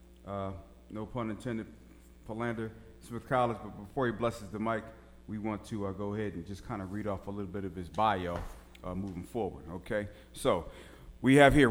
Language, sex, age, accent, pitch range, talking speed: English, male, 40-59, American, 95-120 Hz, 200 wpm